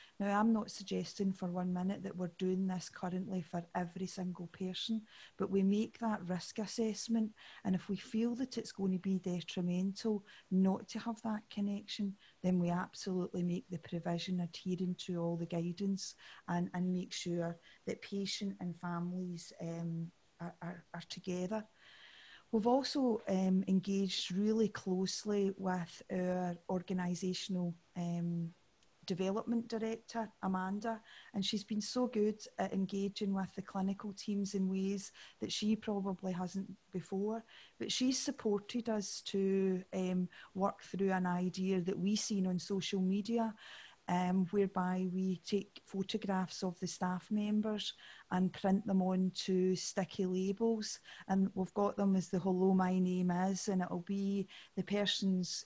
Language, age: English, 40-59